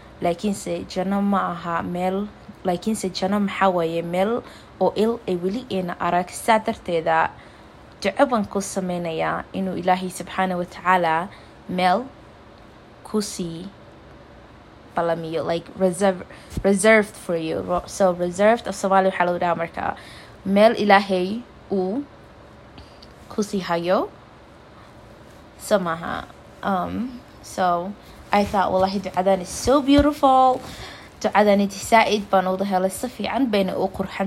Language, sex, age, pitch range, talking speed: English, female, 20-39, 180-210 Hz, 110 wpm